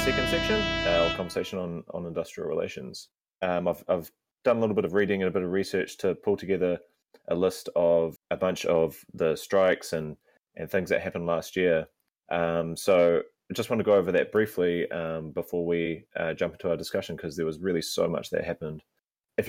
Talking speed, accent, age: 205 wpm, Australian, 20-39